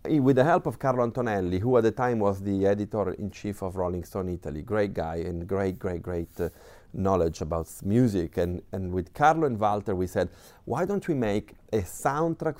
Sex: male